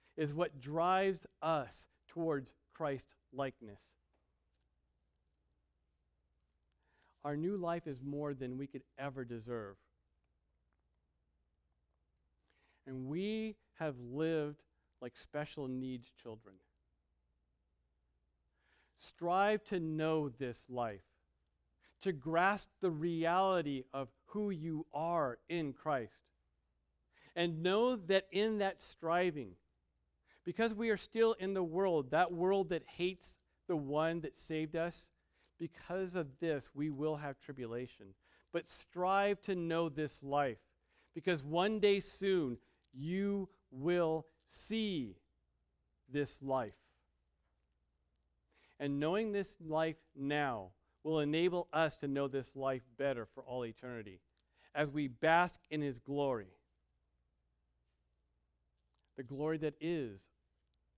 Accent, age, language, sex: American, 50-69, English, male